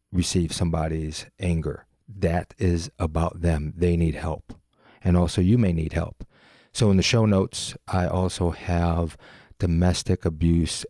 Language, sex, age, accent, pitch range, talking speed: English, male, 30-49, American, 85-95 Hz, 145 wpm